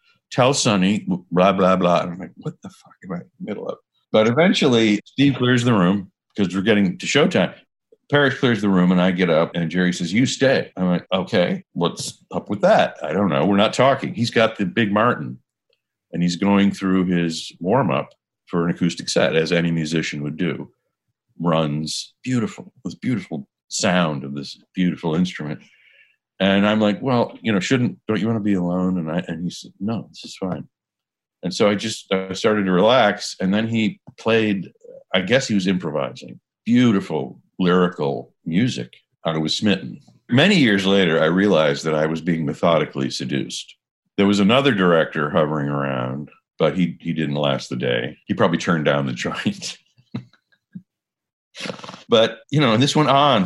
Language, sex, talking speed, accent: English, male, 185 wpm, American